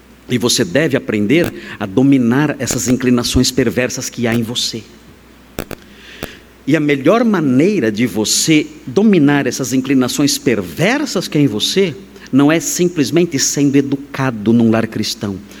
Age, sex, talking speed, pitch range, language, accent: 50-69, male, 135 wpm, 125-185 Hz, Portuguese, Brazilian